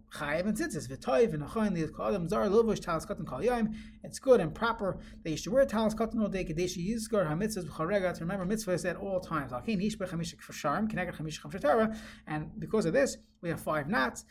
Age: 30-49